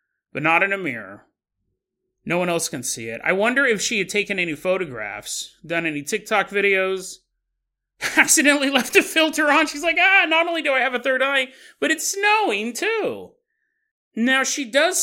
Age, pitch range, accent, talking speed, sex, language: 30-49, 165-255 Hz, American, 185 wpm, male, English